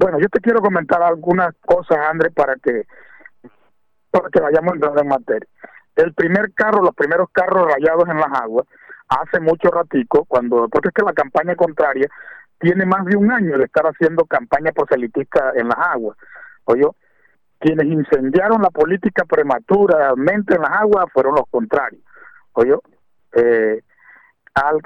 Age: 50-69